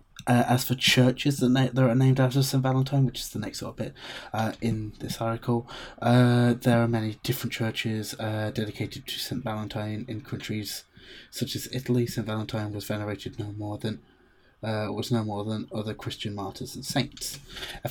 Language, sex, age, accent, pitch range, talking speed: English, male, 20-39, British, 105-125 Hz, 190 wpm